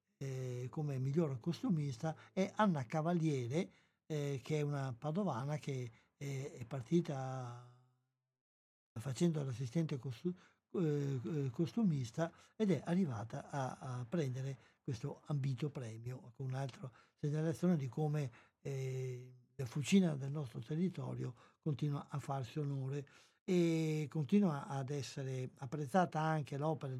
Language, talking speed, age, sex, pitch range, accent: Italian, 120 wpm, 60-79, male, 135-170 Hz, native